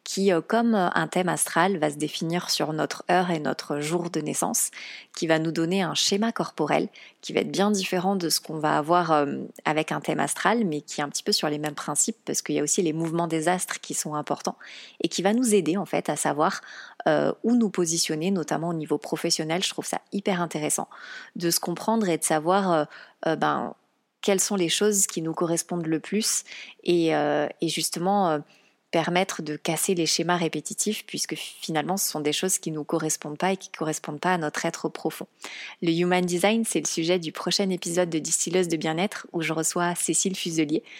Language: French